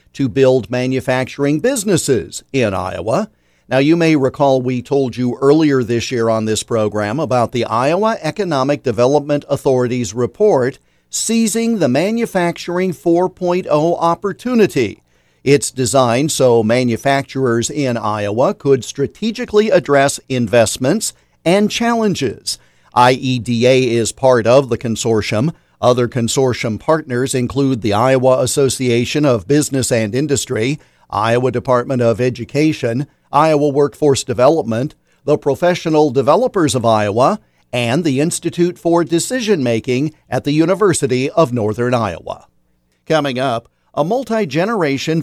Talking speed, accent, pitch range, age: 115 wpm, American, 120-160 Hz, 50-69